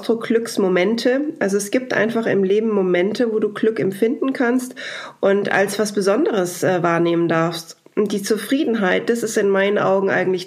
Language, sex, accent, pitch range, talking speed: German, female, German, 180-225 Hz, 165 wpm